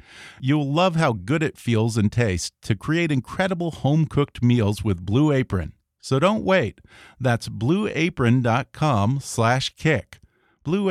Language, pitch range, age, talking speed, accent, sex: English, 110-150 Hz, 40-59, 130 wpm, American, male